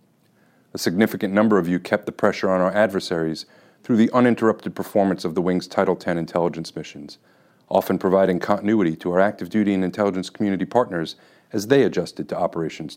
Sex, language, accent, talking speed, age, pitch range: male, English, American, 175 wpm, 40-59, 90-105 Hz